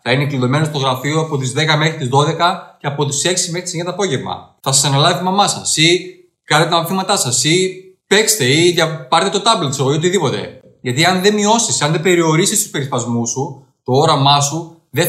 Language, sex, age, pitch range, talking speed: Greek, male, 20-39, 130-165 Hz, 210 wpm